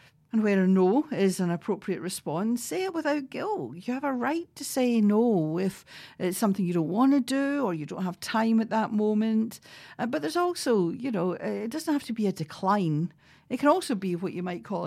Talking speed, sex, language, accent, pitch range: 220 wpm, female, English, British, 170-230 Hz